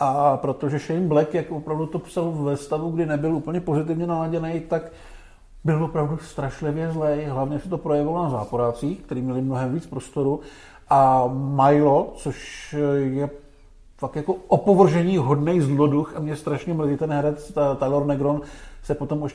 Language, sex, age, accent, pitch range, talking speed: Czech, male, 50-69, native, 130-160 Hz, 160 wpm